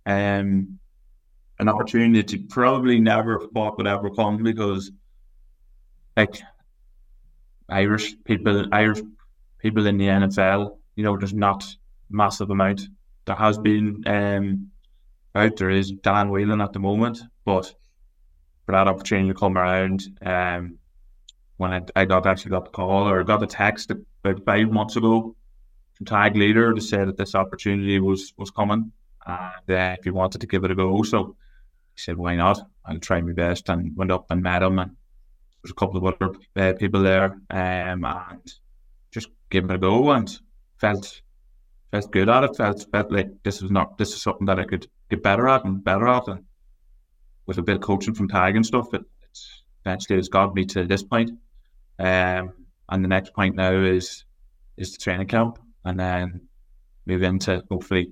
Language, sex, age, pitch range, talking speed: English, male, 20-39, 90-105 Hz, 180 wpm